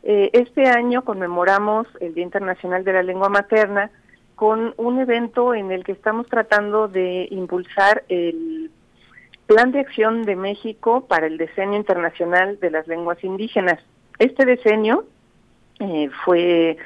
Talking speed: 135 wpm